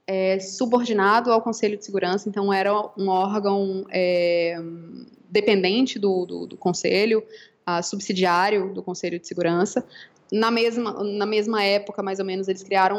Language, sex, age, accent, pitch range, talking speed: Portuguese, female, 20-39, Brazilian, 190-220 Hz, 150 wpm